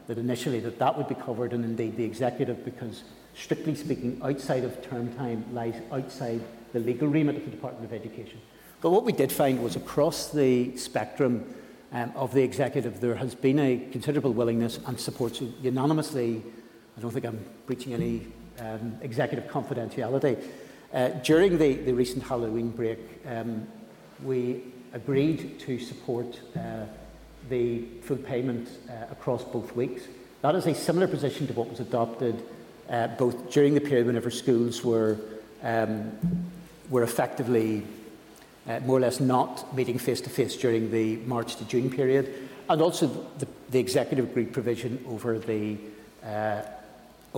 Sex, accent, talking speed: male, British, 155 wpm